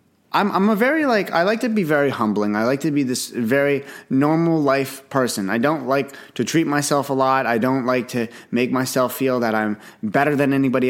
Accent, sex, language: American, male, English